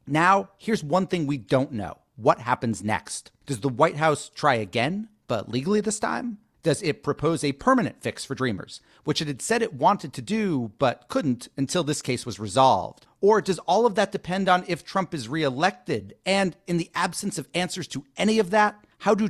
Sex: male